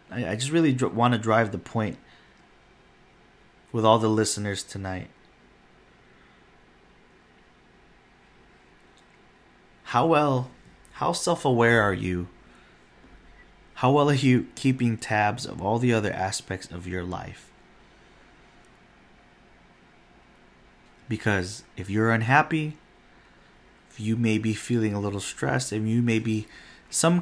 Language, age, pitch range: English, 30-49, 100-125 Hz